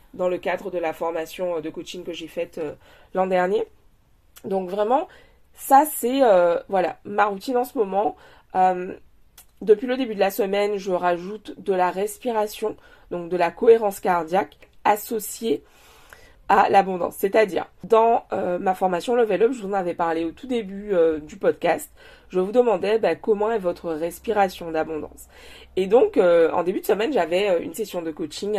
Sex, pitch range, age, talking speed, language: female, 175-235 Hz, 20-39, 175 wpm, French